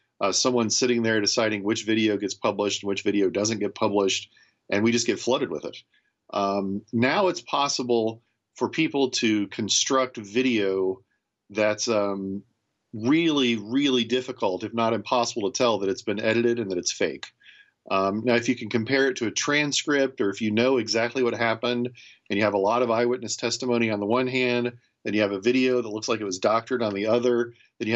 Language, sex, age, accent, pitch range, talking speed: English, male, 40-59, American, 105-125 Hz, 200 wpm